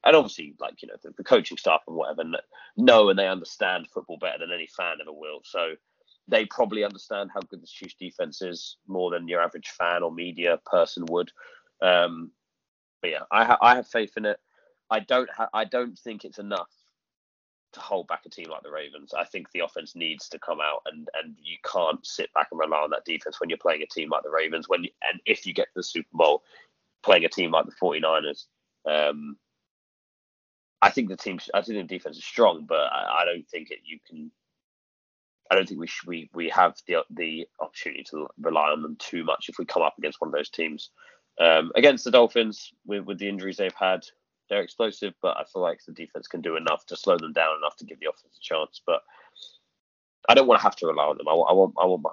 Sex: male